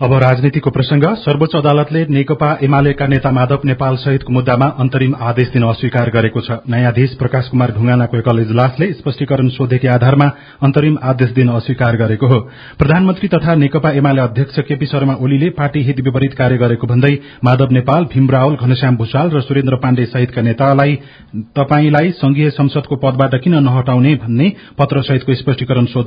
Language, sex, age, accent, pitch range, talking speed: English, male, 40-59, Indian, 125-140 Hz, 75 wpm